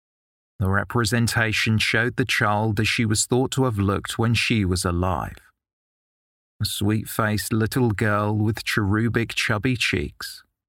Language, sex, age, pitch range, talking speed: English, male, 30-49, 95-115 Hz, 135 wpm